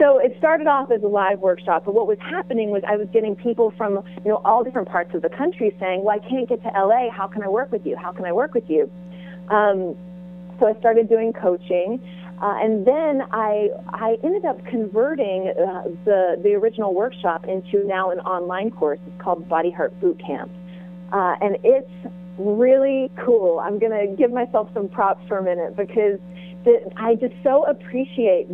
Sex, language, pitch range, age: female, English, 180-225 Hz, 30-49